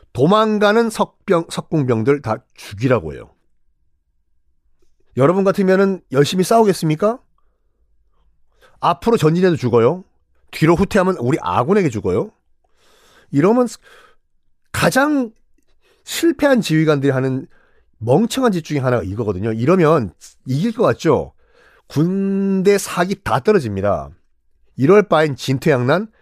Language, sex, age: Korean, male, 40-59